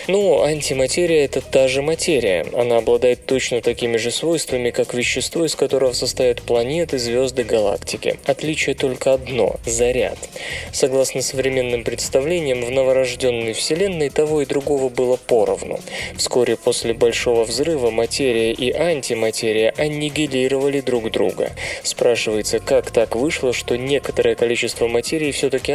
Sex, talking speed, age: male, 130 wpm, 20-39